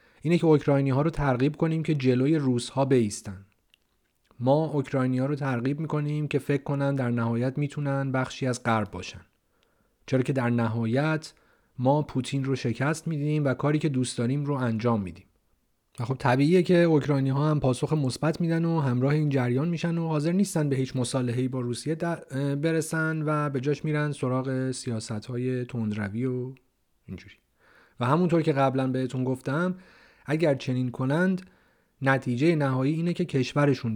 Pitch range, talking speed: 125-155 Hz, 165 wpm